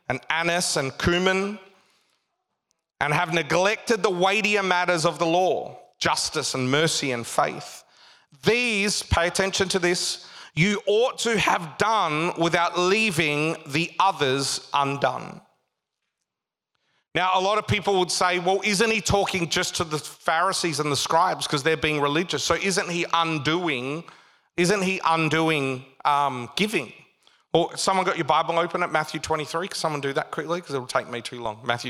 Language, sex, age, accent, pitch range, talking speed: English, male, 40-59, Australian, 155-190 Hz, 160 wpm